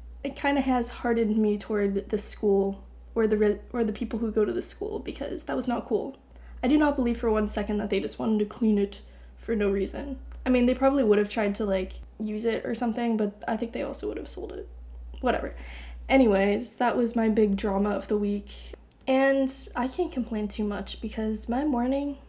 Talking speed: 220 wpm